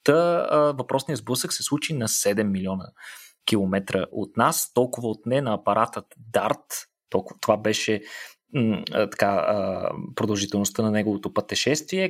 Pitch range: 105-150 Hz